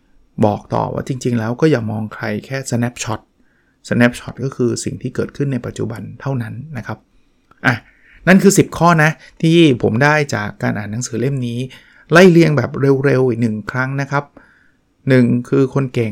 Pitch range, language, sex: 110-135 Hz, Thai, male